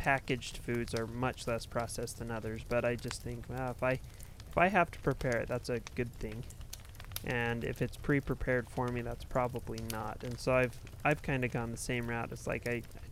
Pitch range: 120-135 Hz